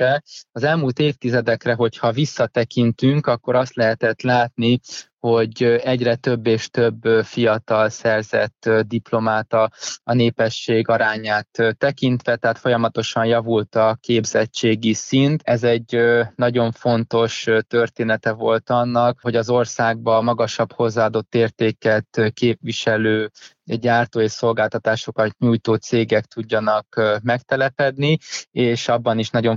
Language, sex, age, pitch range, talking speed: Hungarian, male, 20-39, 115-120 Hz, 110 wpm